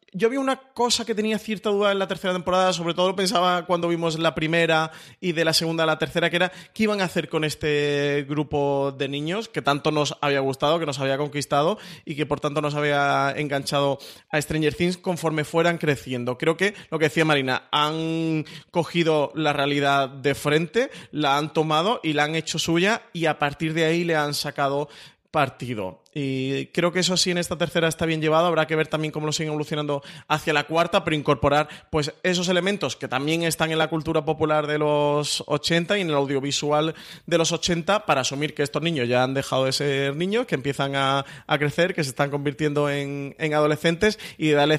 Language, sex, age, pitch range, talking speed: Spanish, male, 30-49, 145-170 Hz, 210 wpm